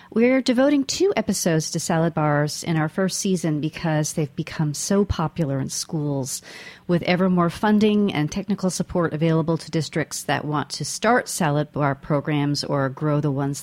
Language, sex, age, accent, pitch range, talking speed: English, female, 40-59, American, 150-185 Hz, 170 wpm